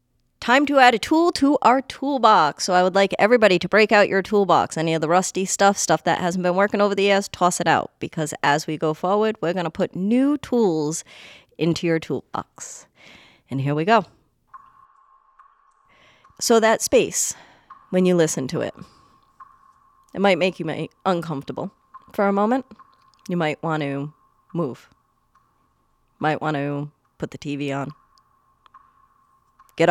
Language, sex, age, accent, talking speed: English, female, 30-49, American, 165 wpm